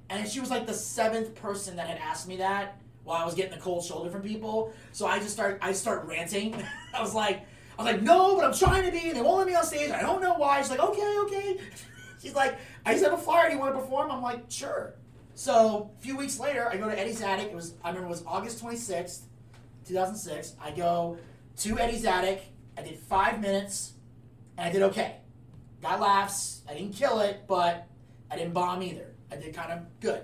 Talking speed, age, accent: 230 wpm, 30-49, American